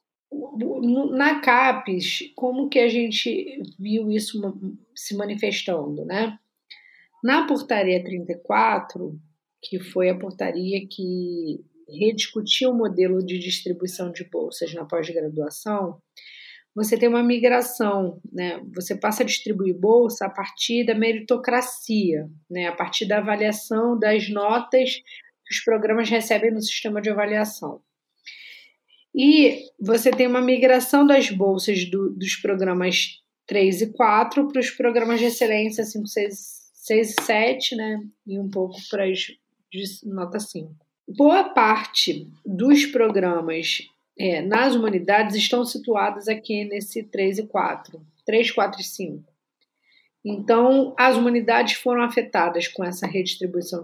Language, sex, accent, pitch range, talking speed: Portuguese, female, Brazilian, 185-240 Hz, 125 wpm